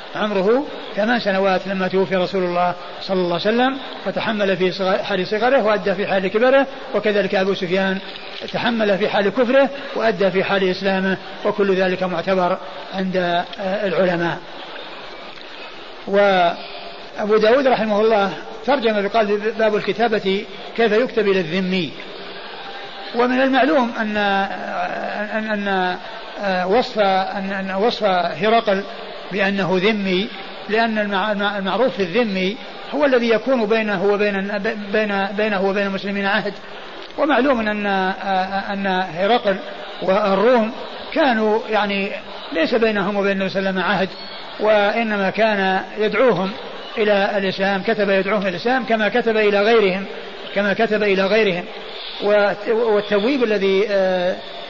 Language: Arabic